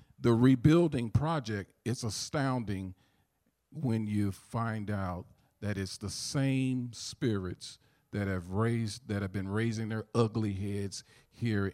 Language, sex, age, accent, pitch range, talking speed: English, male, 50-69, American, 95-125 Hz, 120 wpm